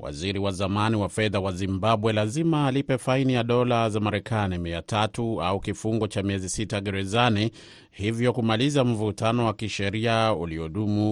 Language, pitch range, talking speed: Swahili, 95-115 Hz, 145 wpm